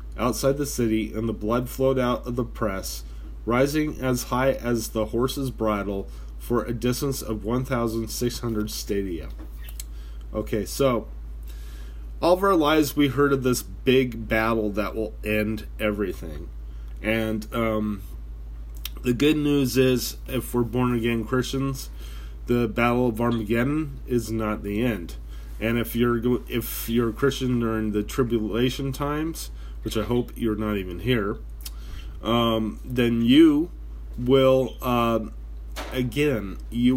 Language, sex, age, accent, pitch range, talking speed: English, male, 30-49, American, 80-125 Hz, 135 wpm